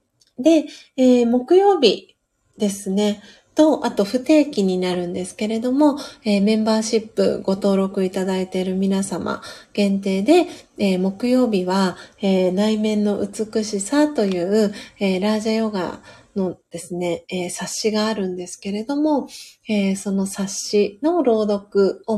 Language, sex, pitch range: Japanese, female, 185-230 Hz